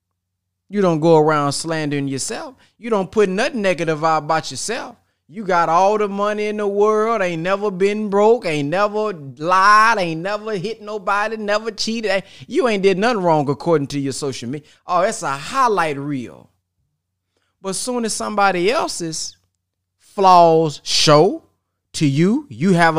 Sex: male